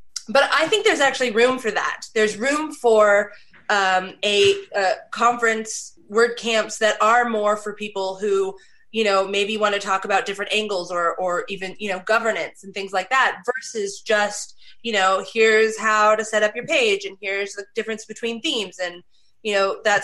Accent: American